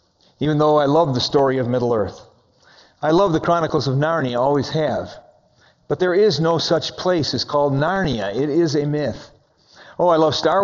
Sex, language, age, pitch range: male, English, 50-69, 130-160 Hz